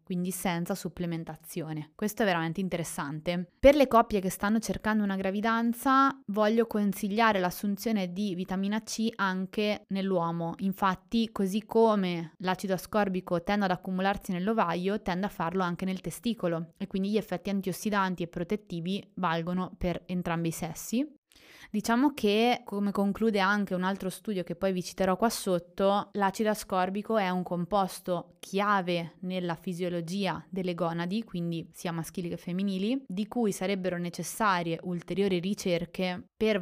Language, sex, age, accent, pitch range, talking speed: Italian, female, 20-39, native, 175-205 Hz, 140 wpm